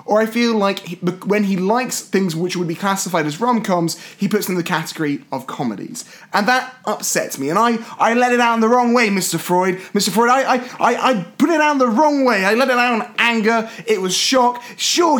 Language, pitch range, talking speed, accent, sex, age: English, 220-270 Hz, 240 wpm, British, male, 30-49